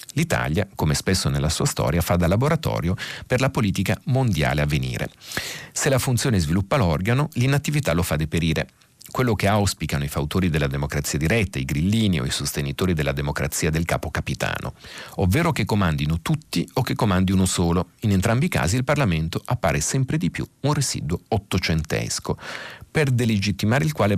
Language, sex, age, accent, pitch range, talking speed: Italian, male, 40-59, native, 75-115 Hz, 170 wpm